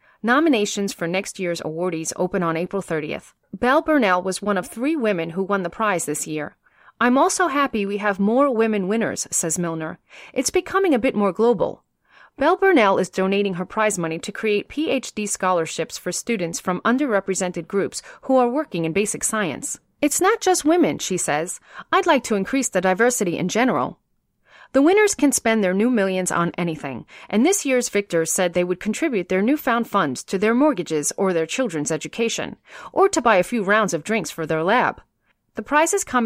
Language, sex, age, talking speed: English, female, 30-49, 190 wpm